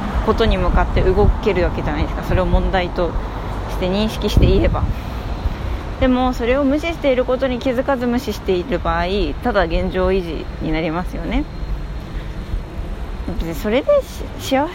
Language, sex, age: Japanese, female, 20-39